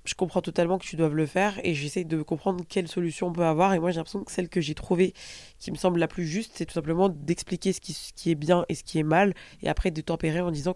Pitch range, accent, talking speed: 160-190 Hz, French, 295 wpm